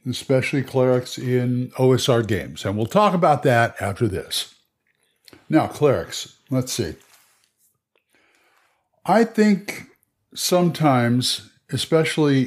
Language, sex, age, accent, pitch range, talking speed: English, male, 60-79, American, 110-145 Hz, 95 wpm